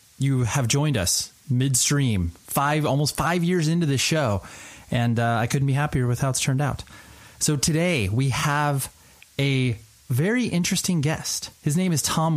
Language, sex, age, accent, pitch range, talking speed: English, male, 30-49, American, 120-150 Hz, 170 wpm